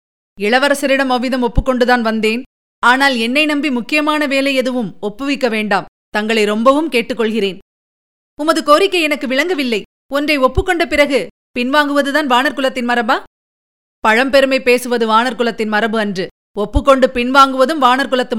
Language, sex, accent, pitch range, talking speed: Tamil, female, native, 225-270 Hz, 120 wpm